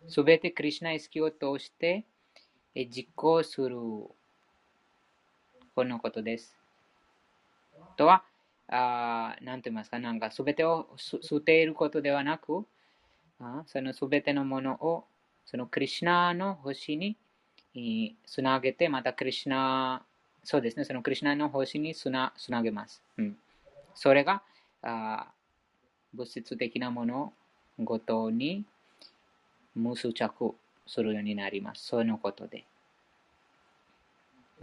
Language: Japanese